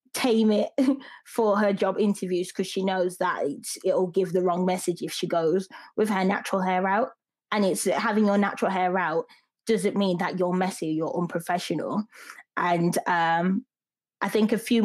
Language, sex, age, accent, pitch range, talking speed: English, female, 20-39, British, 185-220 Hz, 175 wpm